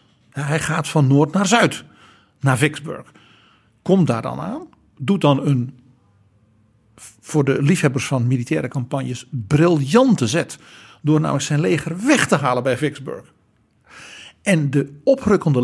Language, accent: Dutch, Dutch